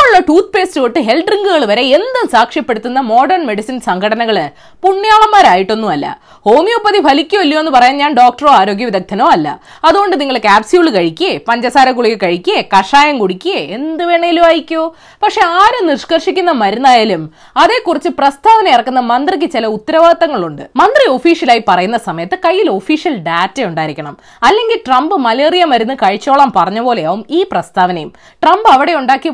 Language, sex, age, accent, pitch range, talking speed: Malayalam, female, 20-39, native, 215-360 Hz, 100 wpm